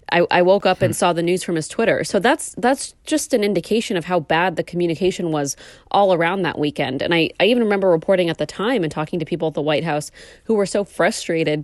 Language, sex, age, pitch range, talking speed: English, female, 20-39, 160-190 Hz, 240 wpm